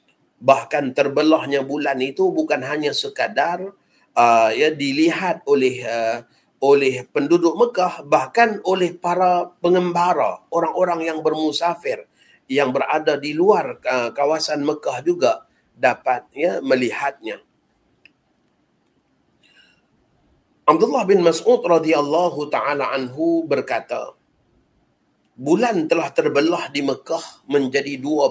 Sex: male